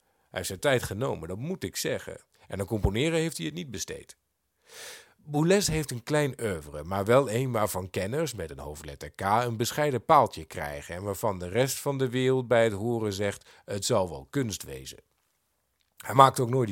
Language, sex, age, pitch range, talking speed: Dutch, male, 50-69, 100-150 Hz, 195 wpm